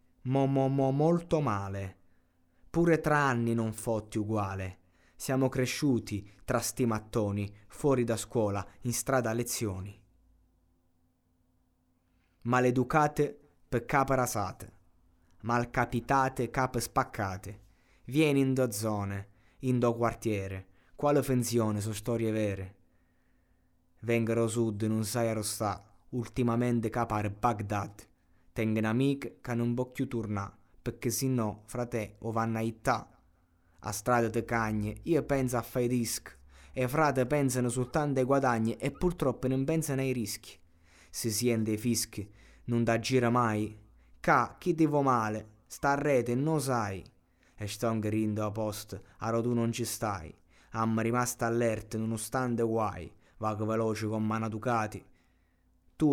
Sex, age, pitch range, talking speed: male, 20-39, 100-125 Hz, 135 wpm